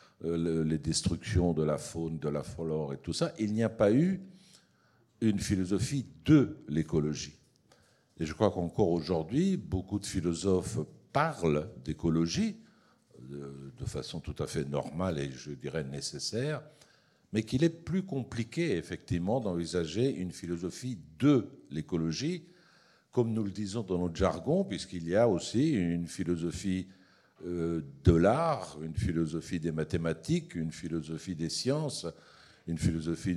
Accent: French